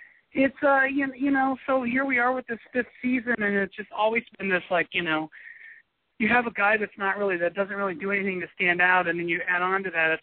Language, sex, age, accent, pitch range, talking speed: English, male, 40-59, American, 155-230 Hz, 265 wpm